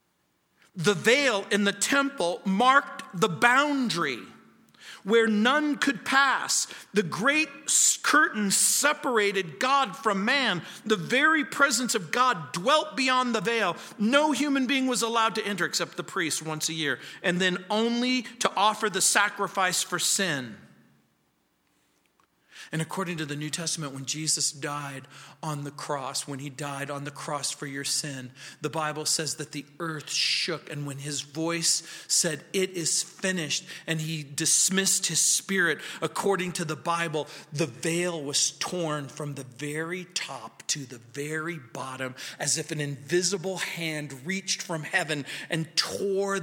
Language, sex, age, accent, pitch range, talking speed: English, male, 40-59, American, 150-210 Hz, 150 wpm